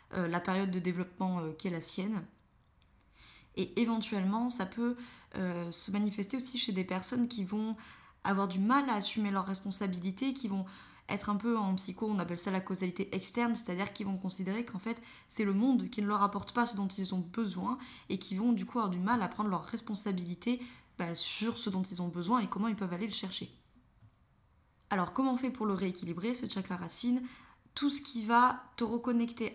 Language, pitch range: French, 190-230 Hz